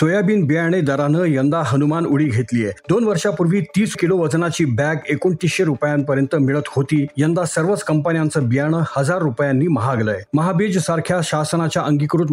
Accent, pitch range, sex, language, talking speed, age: native, 140-170 Hz, male, Marathi, 90 wpm, 40-59